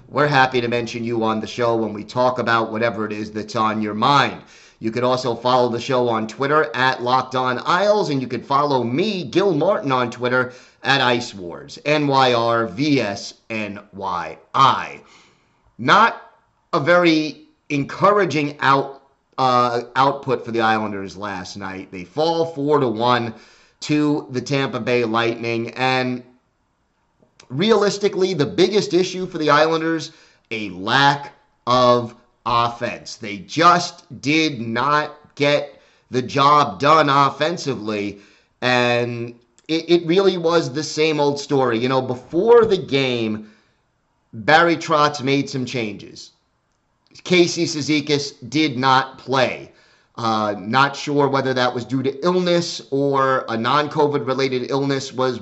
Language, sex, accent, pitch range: English, male, American, 120-150 Hz